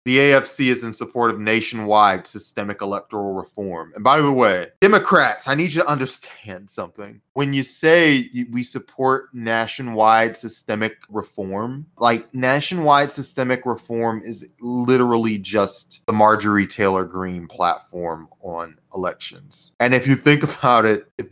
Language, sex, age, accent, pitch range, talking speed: English, male, 20-39, American, 95-125 Hz, 140 wpm